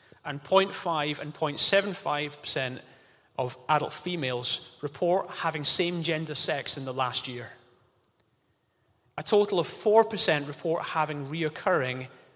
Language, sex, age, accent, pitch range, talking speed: English, male, 30-49, British, 140-180 Hz, 120 wpm